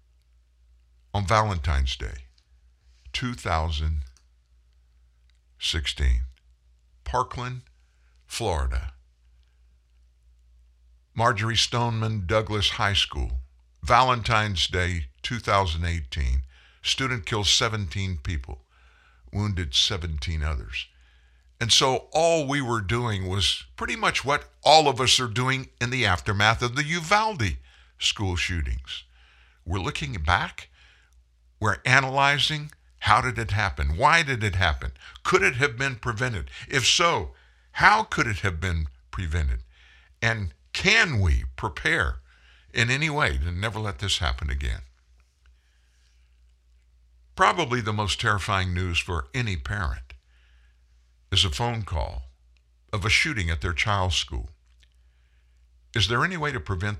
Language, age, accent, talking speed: English, 60-79, American, 115 wpm